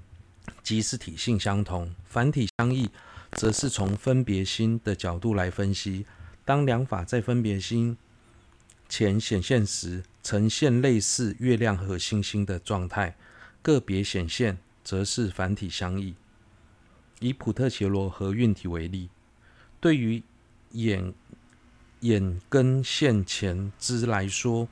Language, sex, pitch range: Chinese, male, 95-115 Hz